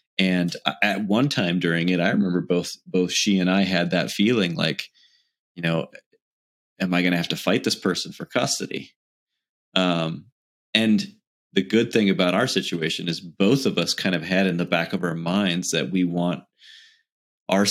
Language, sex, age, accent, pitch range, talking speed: English, male, 30-49, American, 85-95 Hz, 185 wpm